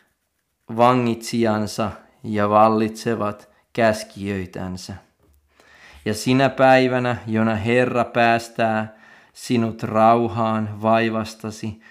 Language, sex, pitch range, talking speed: Finnish, male, 105-125 Hz, 65 wpm